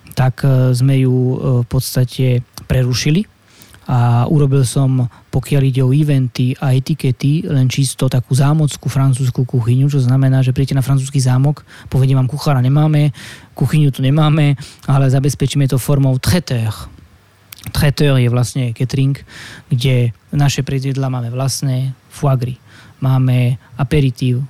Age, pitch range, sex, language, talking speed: 20-39, 125-140 Hz, male, Slovak, 125 wpm